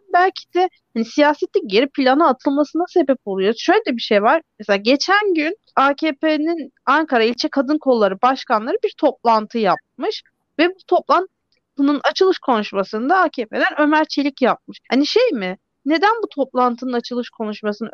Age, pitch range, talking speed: 40-59, 225-305 Hz, 140 wpm